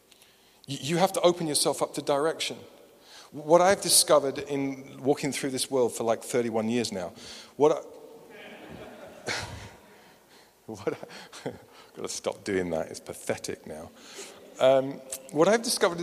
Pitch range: 125-160 Hz